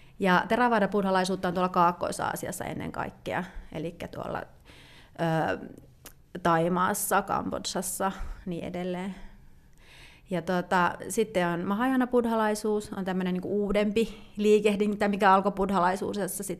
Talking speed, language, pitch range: 100 wpm, Finnish, 180-210 Hz